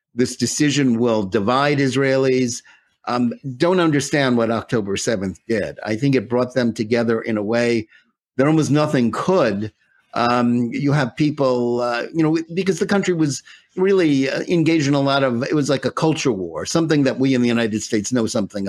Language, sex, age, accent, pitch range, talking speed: English, male, 50-69, American, 115-140 Hz, 185 wpm